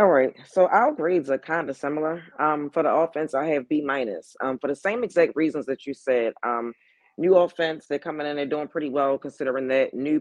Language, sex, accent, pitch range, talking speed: English, female, American, 135-160 Hz, 215 wpm